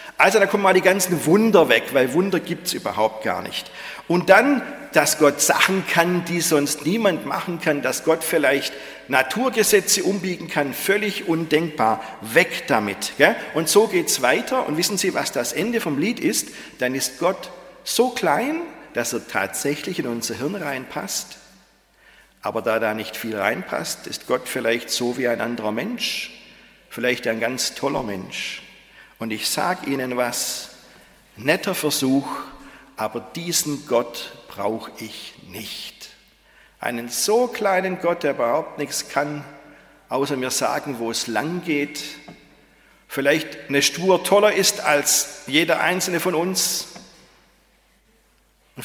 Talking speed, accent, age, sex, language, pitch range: 145 wpm, German, 50-69, male, German, 130-185 Hz